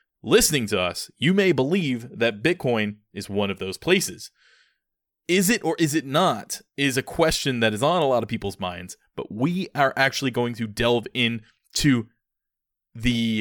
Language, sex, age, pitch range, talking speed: English, male, 20-39, 105-150 Hz, 175 wpm